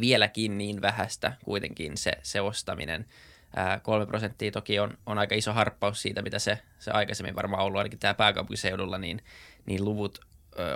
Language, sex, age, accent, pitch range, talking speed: Finnish, male, 20-39, native, 100-110 Hz, 165 wpm